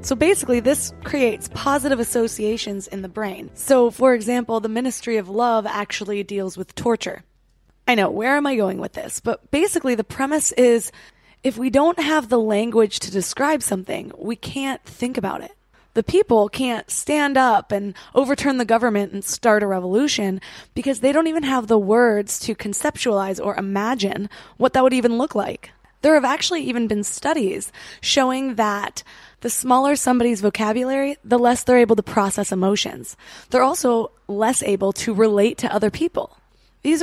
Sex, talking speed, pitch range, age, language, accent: female, 170 wpm, 210-270 Hz, 20-39, English, American